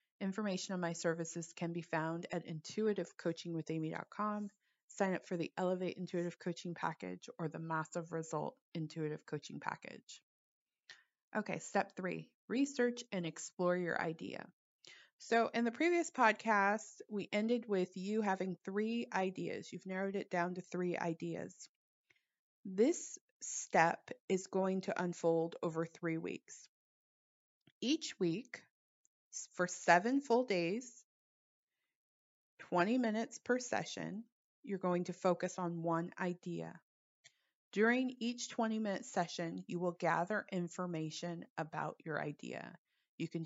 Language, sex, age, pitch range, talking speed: English, female, 20-39, 165-215 Hz, 125 wpm